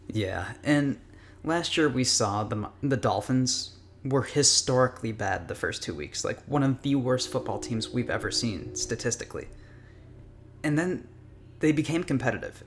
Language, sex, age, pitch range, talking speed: English, male, 20-39, 105-130 Hz, 150 wpm